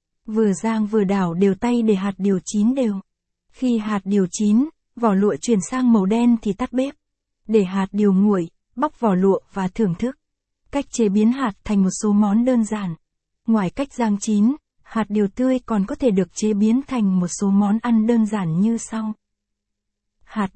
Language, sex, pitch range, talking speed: Vietnamese, female, 195-235 Hz, 195 wpm